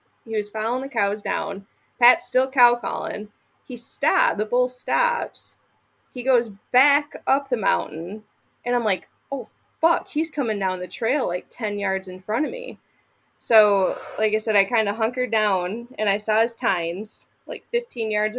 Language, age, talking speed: English, 20-39, 180 wpm